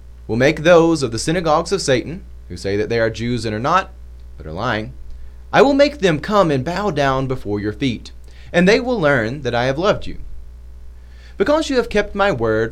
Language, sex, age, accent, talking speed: English, male, 30-49, American, 215 wpm